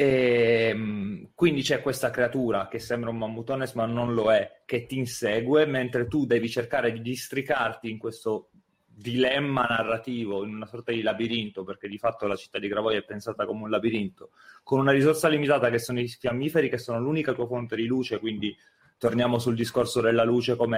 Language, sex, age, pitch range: Italian, male, 30-49, 115-140 Hz